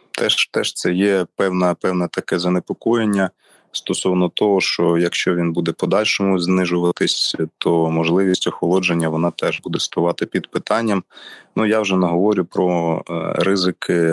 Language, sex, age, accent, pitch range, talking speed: Ukrainian, male, 30-49, native, 85-95 Hz, 130 wpm